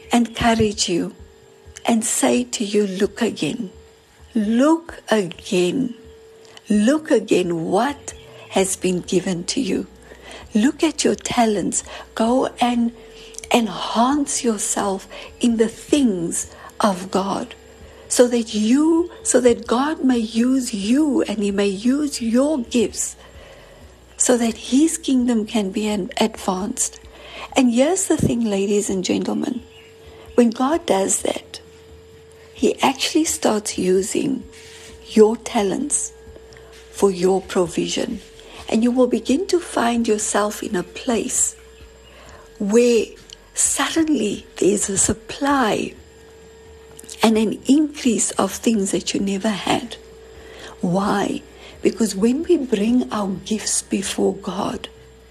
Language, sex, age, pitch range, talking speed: English, female, 60-79, 195-260 Hz, 115 wpm